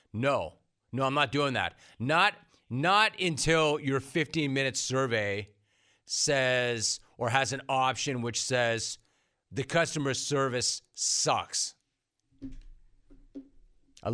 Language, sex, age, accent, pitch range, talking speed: English, male, 30-49, American, 120-165 Hz, 105 wpm